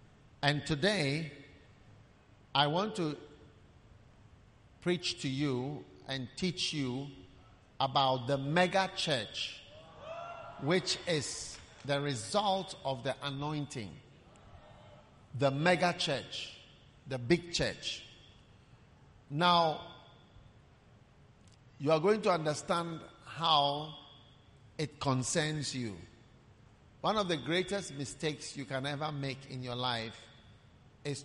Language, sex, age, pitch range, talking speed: English, male, 50-69, 115-150 Hz, 100 wpm